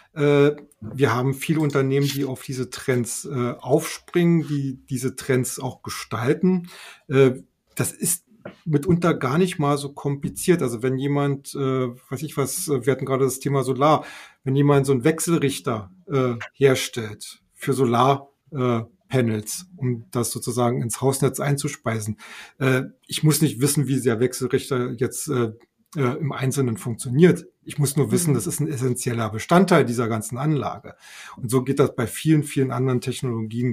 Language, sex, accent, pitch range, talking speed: German, male, German, 120-145 Hz, 140 wpm